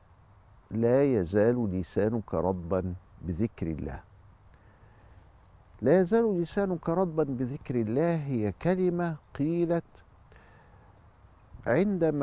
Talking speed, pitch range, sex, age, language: 80 wpm, 95-130 Hz, male, 50-69, Arabic